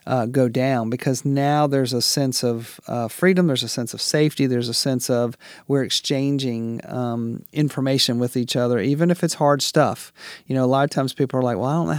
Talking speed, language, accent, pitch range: 225 wpm, English, American, 130-150 Hz